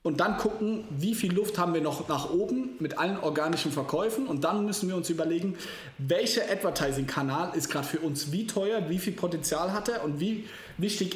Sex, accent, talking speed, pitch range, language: male, German, 200 wpm, 155-195 Hz, German